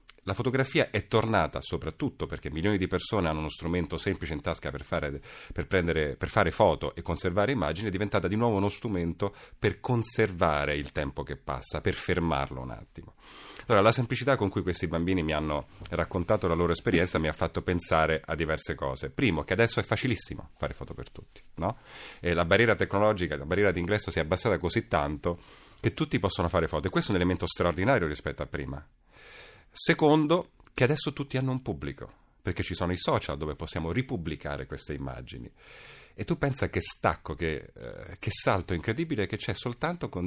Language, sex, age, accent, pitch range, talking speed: Italian, male, 30-49, native, 80-110 Hz, 190 wpm